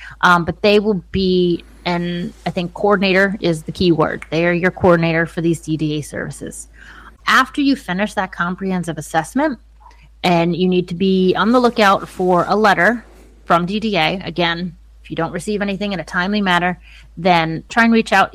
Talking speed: 180 wpm